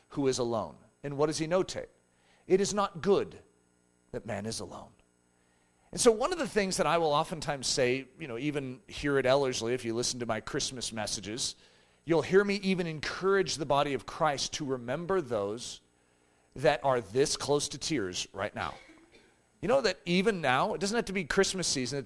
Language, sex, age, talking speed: English, male, 40-59, 200 wpm